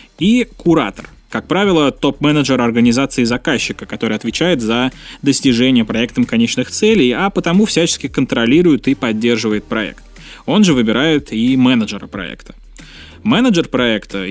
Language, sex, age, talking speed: Russian, male, 20-39, 120 wpm